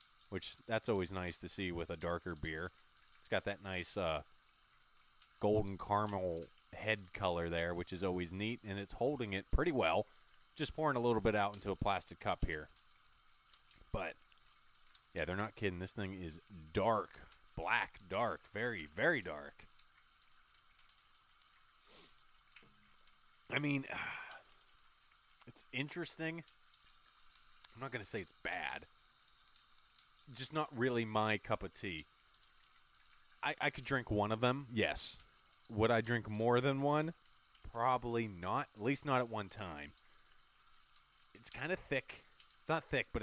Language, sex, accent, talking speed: English, male, American, 145 wpm